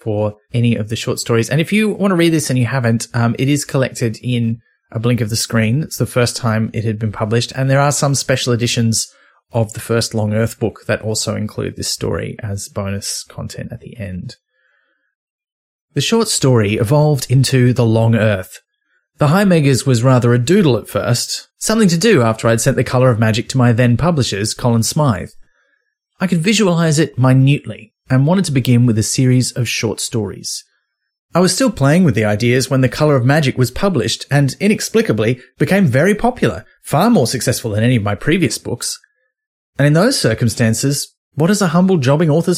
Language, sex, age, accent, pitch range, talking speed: English, male, 30-49, Australian, 115-150 Hz, 200 wpm